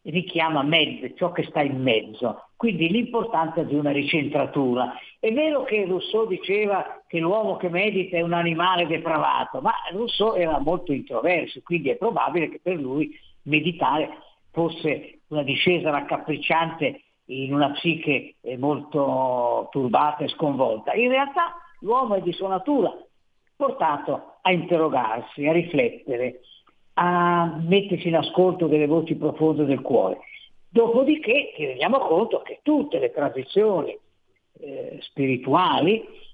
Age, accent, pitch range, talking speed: 50-69, native, 150-235 Hz, 130 wpm